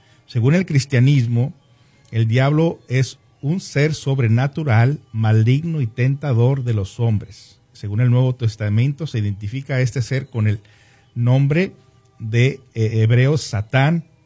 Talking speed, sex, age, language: 125 wpm, male, 50-69, Spanish